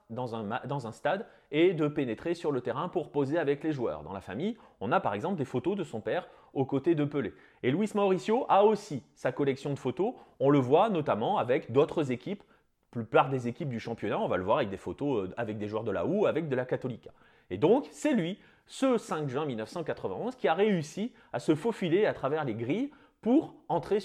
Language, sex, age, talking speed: French, male, 30-49, 225 wpm